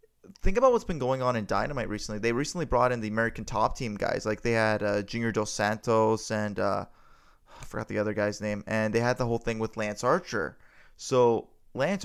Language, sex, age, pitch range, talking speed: English, male, 20-39, 110-125 Hz, 220 wpm